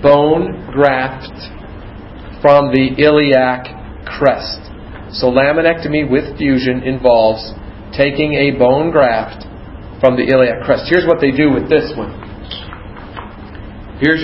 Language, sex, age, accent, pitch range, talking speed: English, male, 40-59, American, 110-155 Hz, 115 wpm